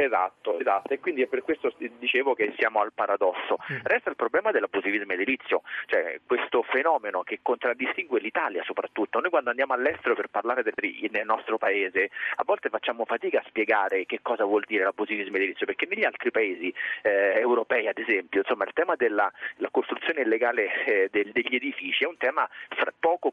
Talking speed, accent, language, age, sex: 175 wpm, native, Italian, 30-49, male